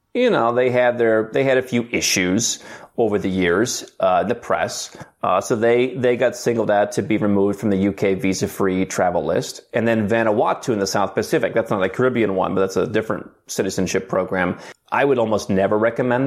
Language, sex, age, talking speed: English, male, 30-49, 205 wpm